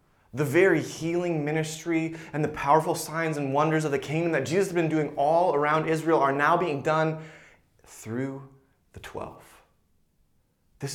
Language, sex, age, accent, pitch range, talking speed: English, male, 20-39, American, 125-160 Hz, 160 wpm